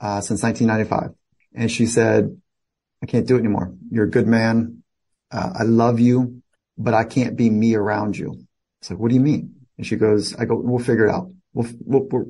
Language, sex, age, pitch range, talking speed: English, male, 30-49, 105-125 Hz, 215 wpm